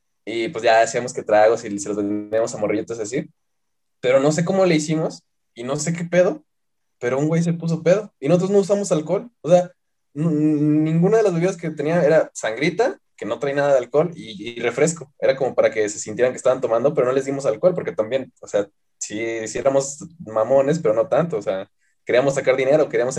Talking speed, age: 225 wpm, 20-39